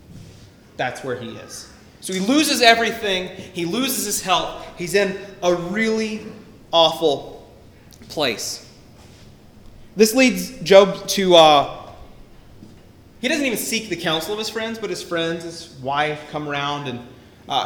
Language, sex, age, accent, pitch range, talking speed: English, male, 30-49, American, 155-205 Hz, 140 wpm